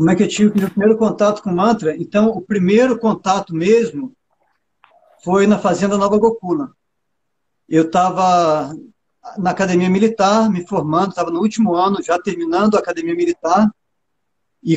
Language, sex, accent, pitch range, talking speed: Portuguese, male, Brazilian, 180-215 Hz, 150 wpm